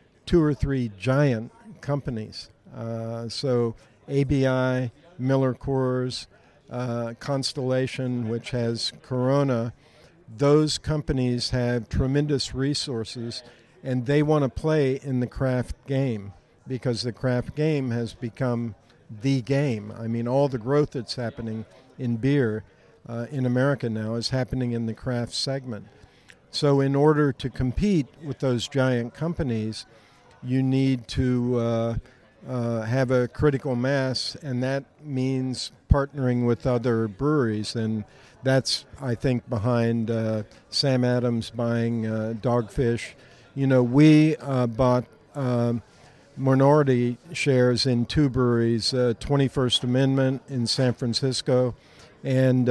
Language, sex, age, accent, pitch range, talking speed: English, male, 50-69, American, 115-135 Hz, 125 wpm